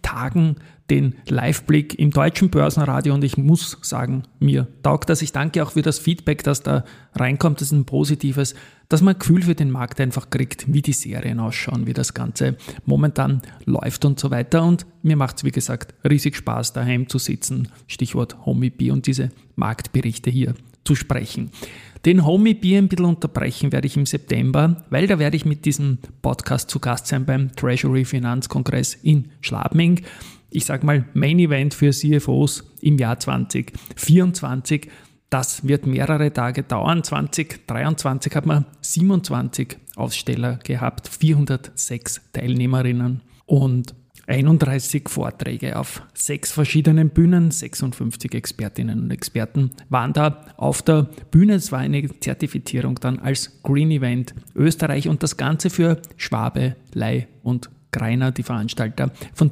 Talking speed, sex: 150 wpm, male